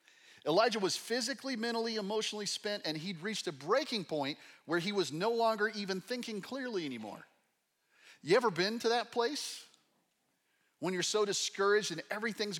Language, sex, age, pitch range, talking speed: English, male, 40-59, 155-210 Hz, 155 wpm